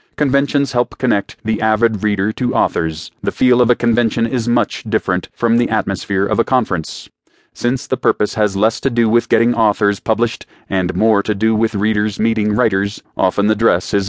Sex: male